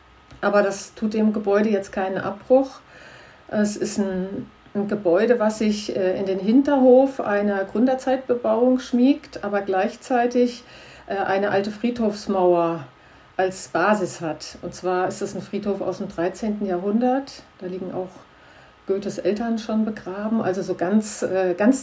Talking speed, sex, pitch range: 145 wpm, female, 200-240 Hz